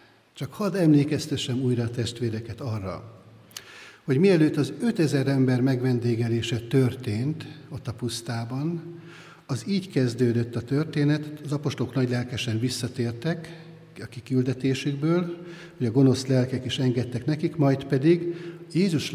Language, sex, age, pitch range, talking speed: Hungarian, male, 60-79, 120-150 Hz, 115 wpm